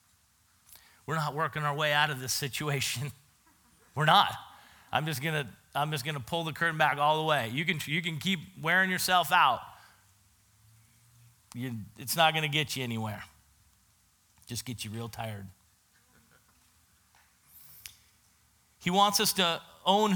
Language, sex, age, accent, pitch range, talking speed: English, male, 40-59, American, 100-160 Hz, 145 wpm